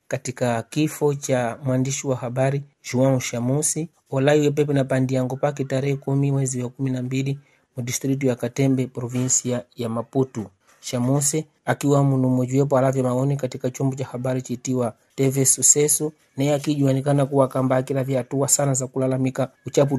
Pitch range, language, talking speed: 125-140 Hz, English, 140 wpm